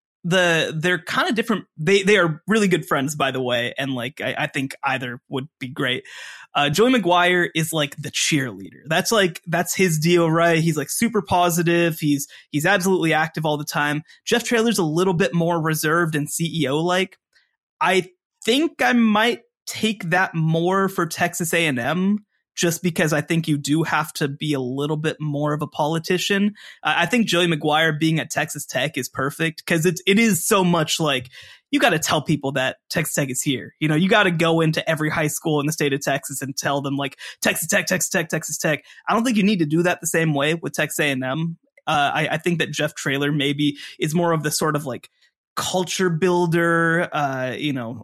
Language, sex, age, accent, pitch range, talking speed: English, male, 20-39, American, 150-180 Hz, 210 wpm